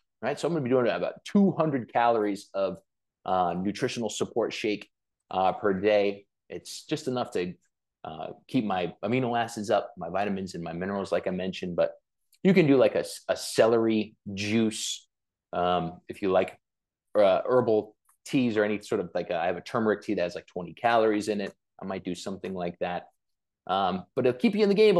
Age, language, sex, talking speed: 20-39, English, male, 200 wpm